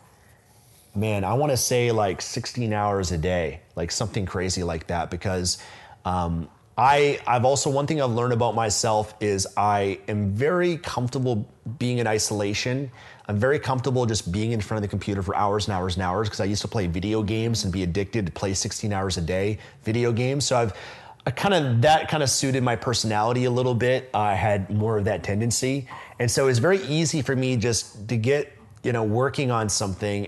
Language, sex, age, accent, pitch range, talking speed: English, male, 30-49, American, 100-125 Hz, 205 wpm